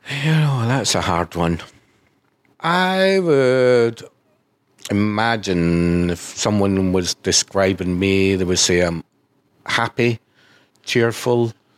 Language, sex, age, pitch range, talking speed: English, male, 60-79, 90-110 Hz, 100 wpm